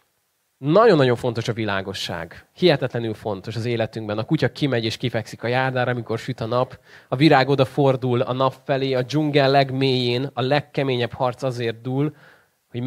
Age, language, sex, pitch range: 20-39, Hungarian, male, 115-145 Hz